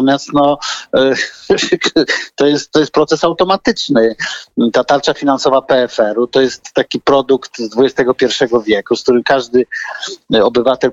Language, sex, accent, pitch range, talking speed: Polish, male, native, 120-155 Hz, 125 wpm